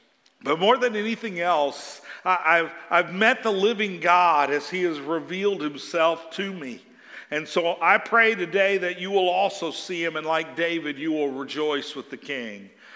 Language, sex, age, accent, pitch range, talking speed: English, male, 50-69, American, 145-195 Hz, 175 wpm